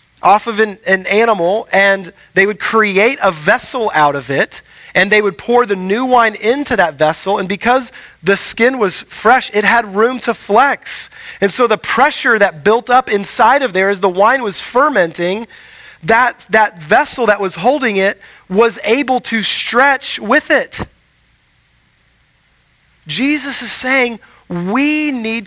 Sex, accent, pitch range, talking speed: male, American, 185-255 Hz, 160 wpm